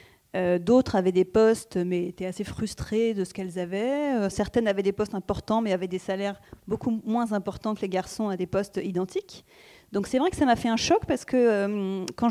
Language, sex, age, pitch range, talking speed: French, female, 30-49, 190-230 Hz, 225 wpm